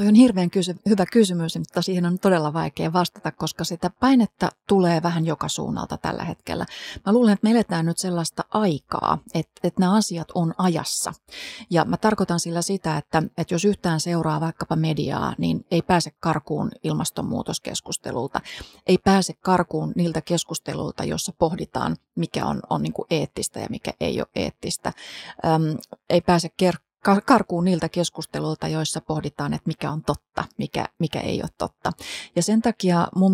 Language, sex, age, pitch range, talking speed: Finnish, female, 30-49, 160-190 Hz, 155 wpm